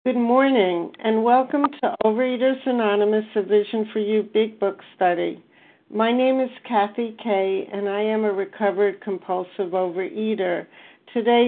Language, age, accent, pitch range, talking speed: English, 60-79, American, 190-220 Hz, 140 wpm